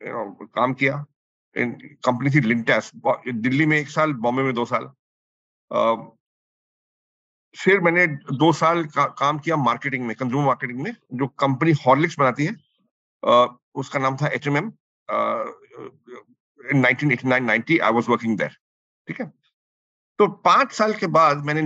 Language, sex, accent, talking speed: Hindi, male, native, 140 wpm